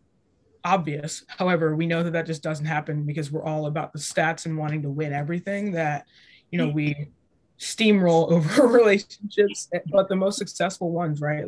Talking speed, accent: 175 wpm, American